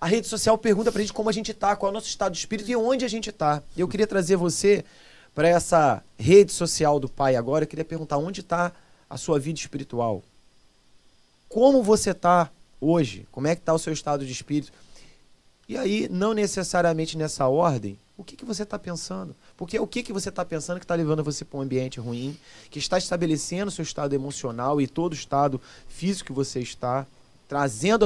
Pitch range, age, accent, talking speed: 135-180 Hz, 30-49, Brazilian, 210 wpm